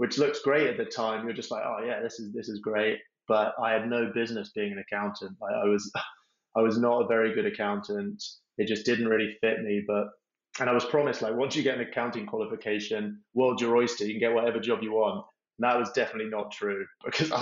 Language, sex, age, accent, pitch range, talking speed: English, male, 20-39, British, 105-120 Hz, 235 wpm